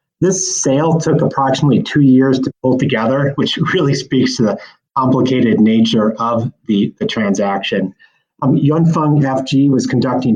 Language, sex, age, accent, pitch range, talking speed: English, male, 30-49, American, 115-135 Hz, 145 wpm